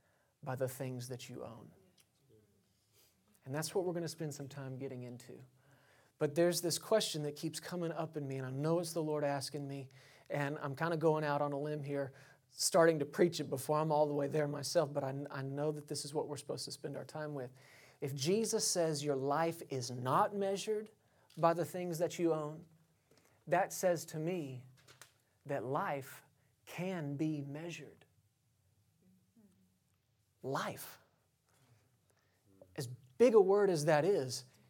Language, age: English, 40-59